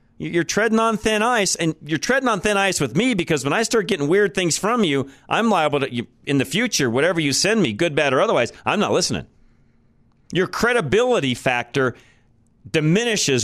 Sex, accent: male, American